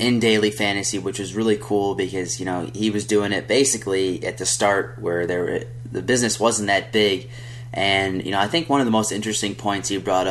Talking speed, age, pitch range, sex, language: 225 wpm, 20-39, 100-120 Hz, male, English